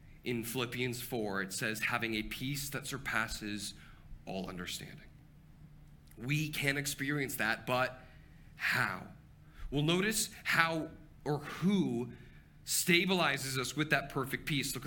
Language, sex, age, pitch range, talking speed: English, male, 30-49, 125-170 Hz, 120 wpm